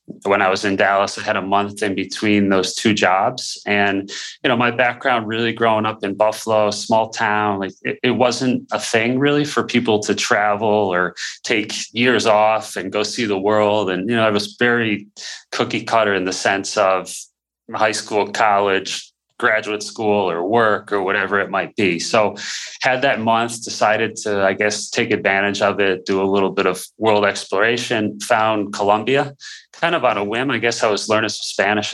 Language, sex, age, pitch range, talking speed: English, male, 30-49, 100-110 Hz, 195 wpm